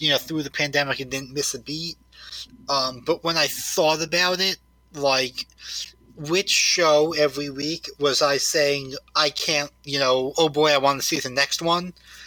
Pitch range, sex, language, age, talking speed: 135-160 Hz, male, English, 30-49, 185 wpm